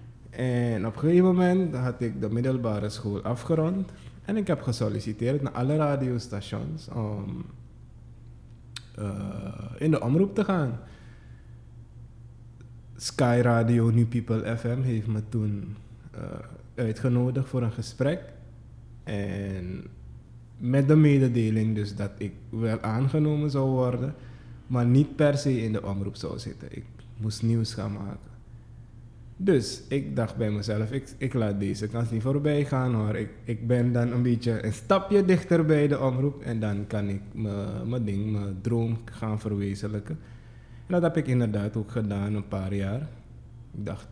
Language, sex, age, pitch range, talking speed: Dutch, male, 20-39, 105-125 Hz, 150 wpm